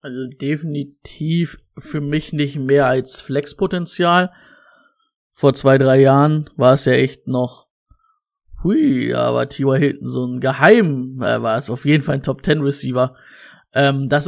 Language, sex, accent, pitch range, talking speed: German, male, German, 135-165 Hz, 140 wpm